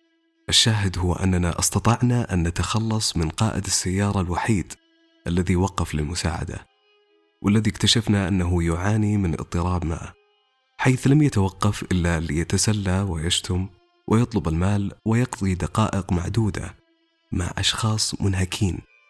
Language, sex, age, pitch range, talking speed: Arabic, male, 30-49, 90-115 Hz, 105 wpm